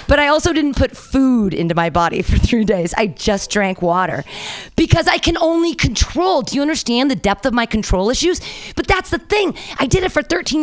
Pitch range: 220-360 Hz